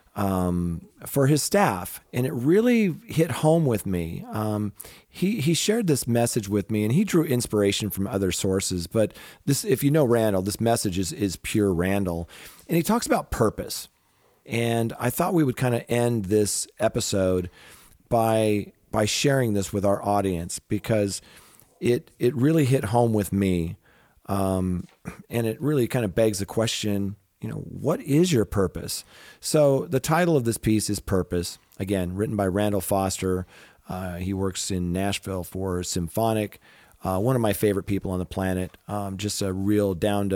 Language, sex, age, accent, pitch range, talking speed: English, male, 40-59, American, 95-115 Hz, 170 wpm